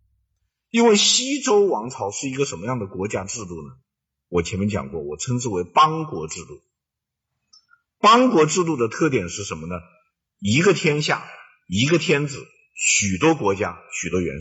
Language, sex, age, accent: Chinese, male, 50-69, native